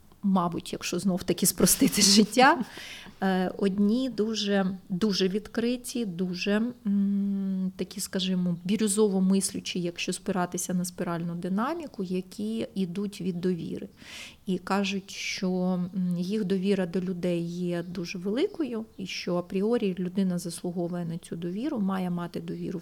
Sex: female